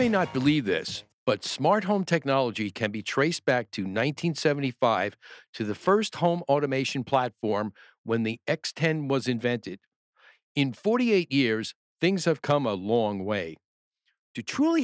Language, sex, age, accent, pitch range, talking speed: English, male, 50-69, American, 120-170 Hz, 150 wpm